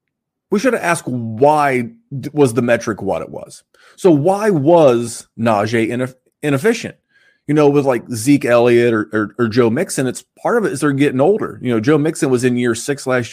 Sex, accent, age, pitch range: male, American, 30-49, 115-155 Hz